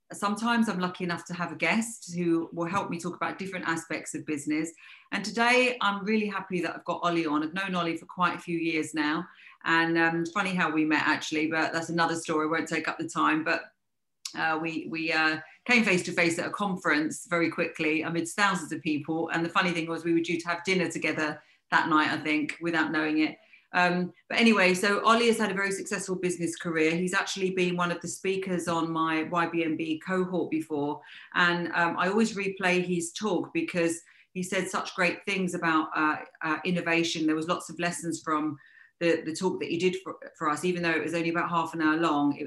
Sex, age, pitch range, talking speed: female, 40-59, 160-180 Hz, 220 wpm